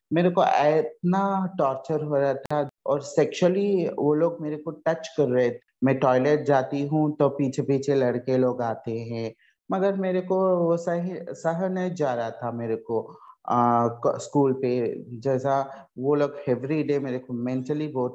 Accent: native